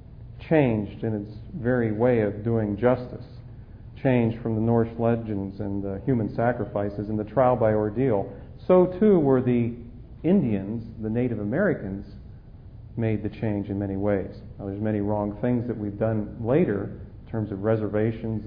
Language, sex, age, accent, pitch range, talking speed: English, male, 40-59, American, 105-125 Hz, 160 wpm